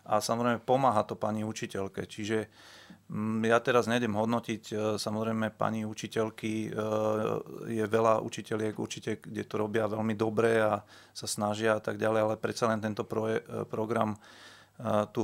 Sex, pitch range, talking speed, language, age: male, 110-115 Hz, 140 wpm, Slovak, 30-49